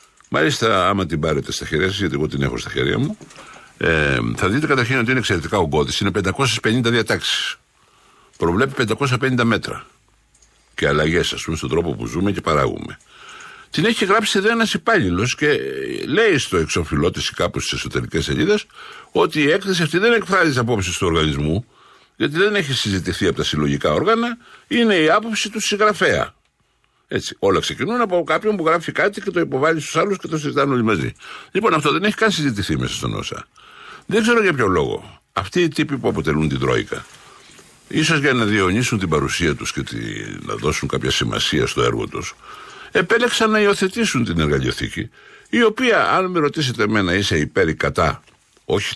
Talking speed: 180 wpm